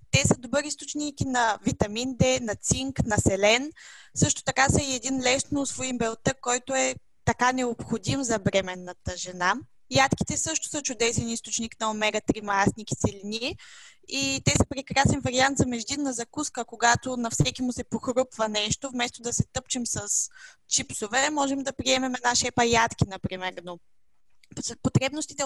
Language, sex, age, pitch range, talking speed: Bulgarian, female, 20-39, 220-270 Hz, 150 wpm